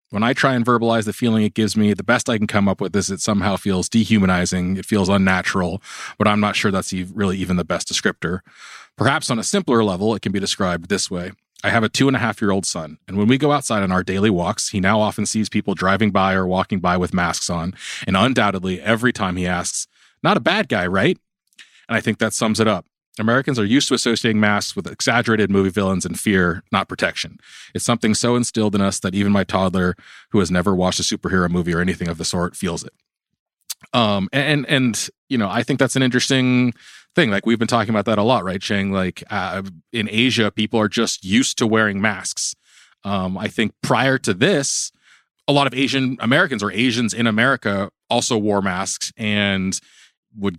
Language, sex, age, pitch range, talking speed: English, male, 30-49, 95-115 Hz, 215 wpm